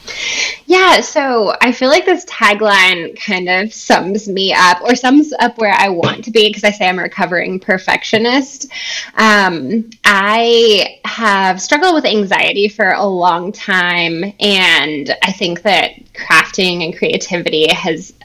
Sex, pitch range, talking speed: female, 190-230 Hz, 150 wpm